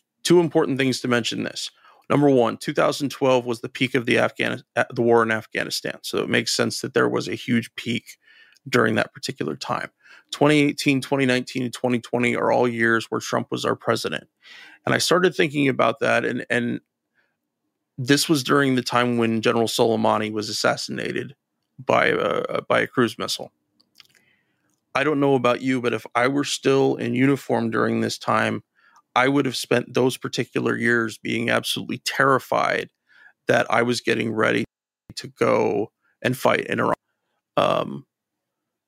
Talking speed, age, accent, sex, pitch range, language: 165 wpm, 30-49, American, male, 115-130 Hz, English